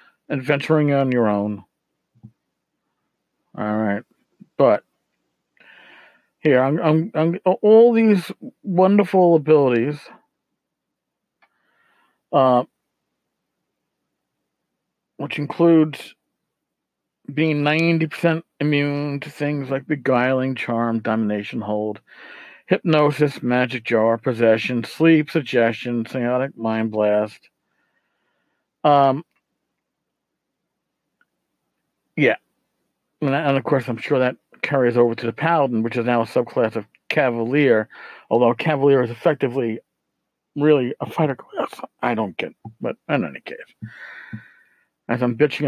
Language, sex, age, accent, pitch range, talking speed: English, male, 50-69, American, 120-155 Hz, 100 wpm